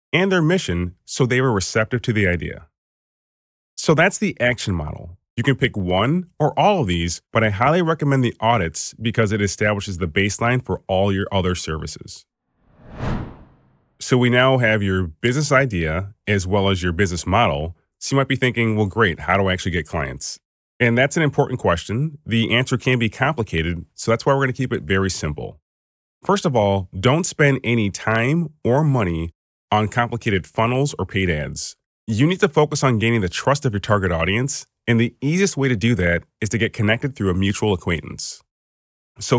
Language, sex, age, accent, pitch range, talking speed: English, male, 30-49, American, 90-130 Hz, 195 wpm